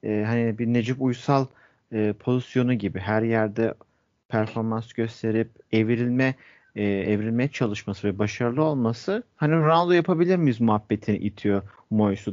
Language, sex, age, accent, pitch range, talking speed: Turkish, male, 40-59, native, 110-135 Hz, 125 wpm